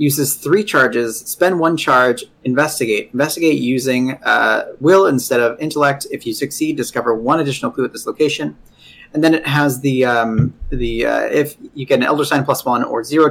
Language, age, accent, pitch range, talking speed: English, 30-49, American, 120-150 Hz, 190 wpm